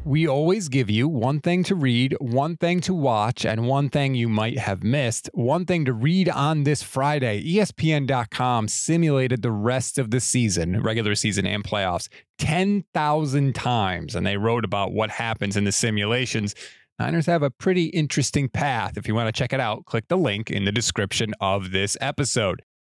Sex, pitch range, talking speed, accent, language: male, 115-150 Hz, 185 wpm, American, English